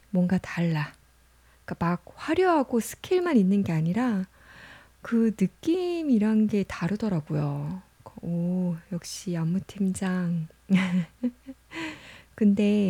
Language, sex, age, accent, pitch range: Korean, female, 20-39, native, 180-245 Hz